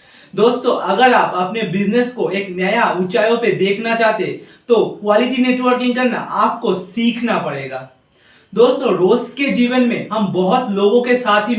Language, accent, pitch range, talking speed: Hindi, native, 200-250 Hz, 155 wpm